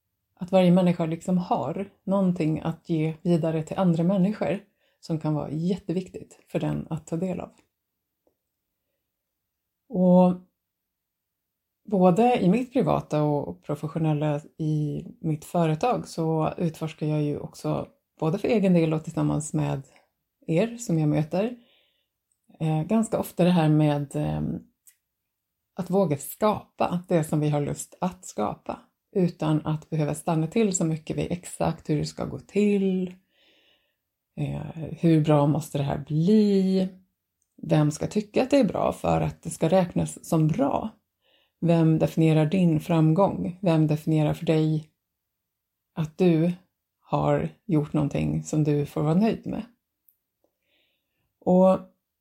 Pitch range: 150-185 Hz